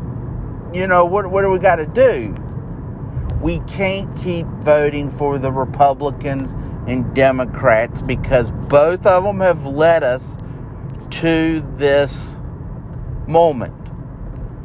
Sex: male